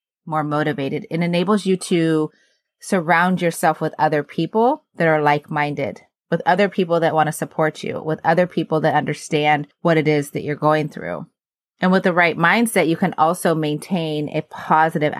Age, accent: 30-49, American